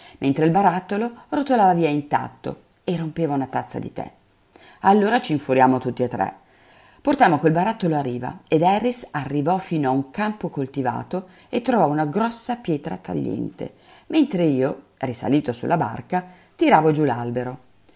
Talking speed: 150 wpm